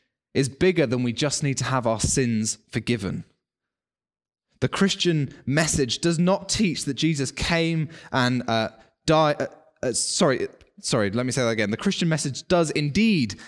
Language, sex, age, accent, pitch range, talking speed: English, male, 20-39, British, 120-160 Hz, 155 wpm